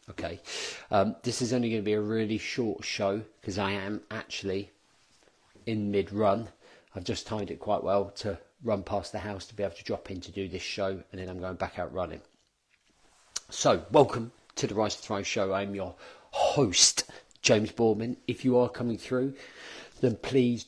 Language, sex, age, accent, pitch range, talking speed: English, male, 40-59, British, 95-110 Hz, 195 wpm